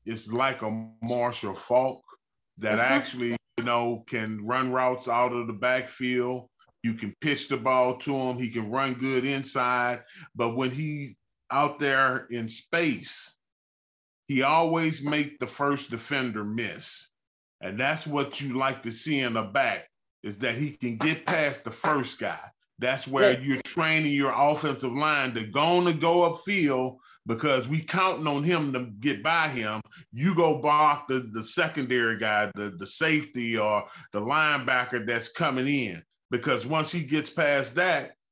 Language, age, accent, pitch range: English, 30-49, American, 115-145 Hz